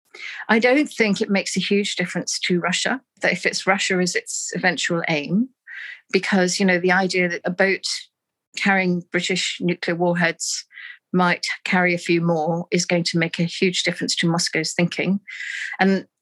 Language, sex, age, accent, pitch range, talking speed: English, female, 50-69, British, 170-200 Hz, 170 wpm